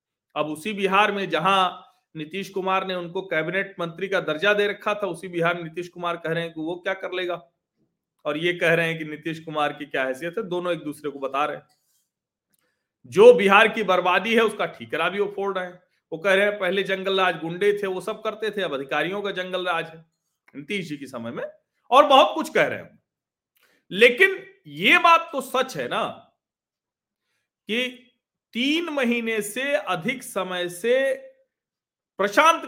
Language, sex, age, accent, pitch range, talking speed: Hindi, male, 40-59, native, 165-210 Hz, 185 wpm